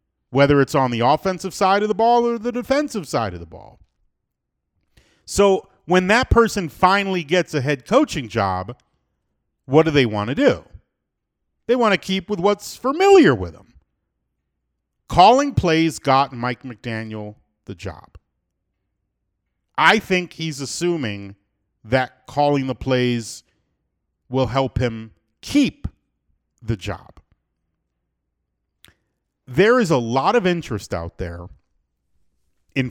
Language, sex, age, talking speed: English, male, 40-59, 130 wpm